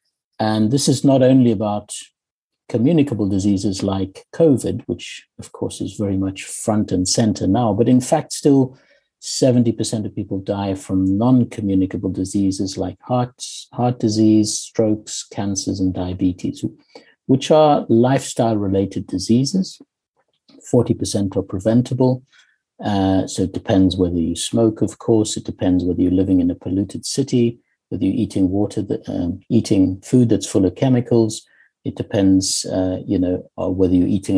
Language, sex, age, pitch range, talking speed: English, male, 60-79, 95-120 Hz, 145 wpm